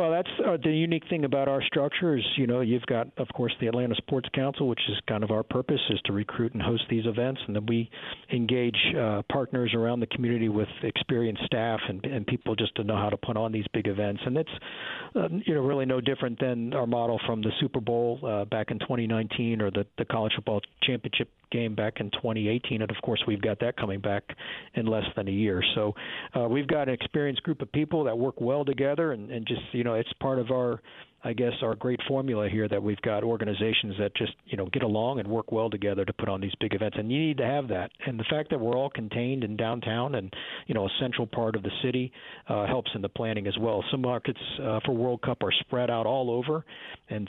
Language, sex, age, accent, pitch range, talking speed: English, male, 50-69, American, 110-130 Hz, 240 wpm